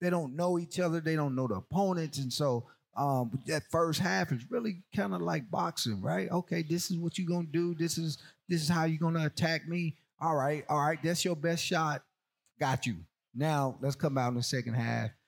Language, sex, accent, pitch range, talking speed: English, male, American, 115-150 Hz, 230 wpm